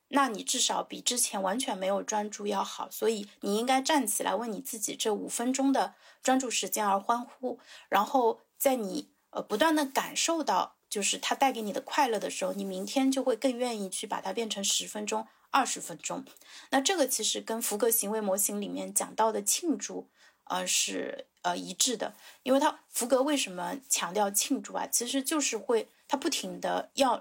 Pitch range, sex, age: 205-265 Hz, female, 30-49